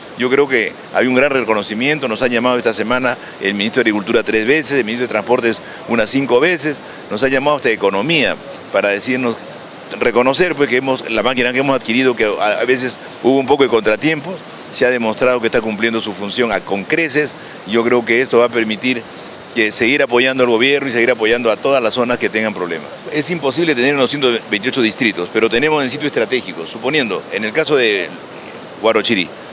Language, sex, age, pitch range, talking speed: English, male, 50-69, 115-150 Hz, 200 wpm